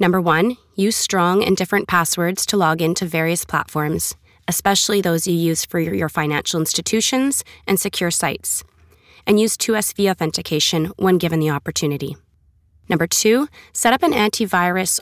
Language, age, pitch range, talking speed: English, 20-39, 155-195 Hz, 150 wpm